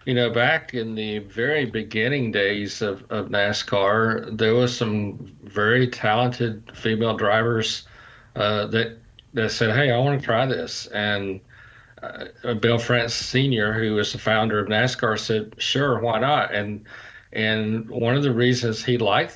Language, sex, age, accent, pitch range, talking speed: English, male, 40-59, American, 105-120 Hz, 160 wpm